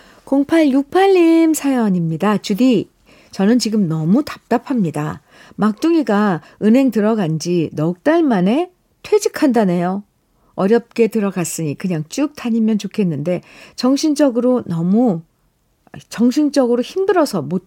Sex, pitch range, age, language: female, 170-240 Hz, 50-69, Korean